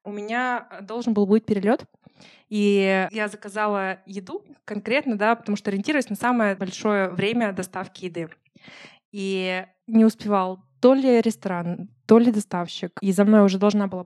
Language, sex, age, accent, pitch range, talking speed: Russian, female, 20-39, native, 195-225 Hz, 155 wpm